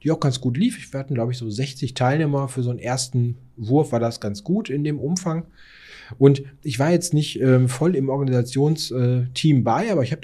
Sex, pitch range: male, 125-150 Hz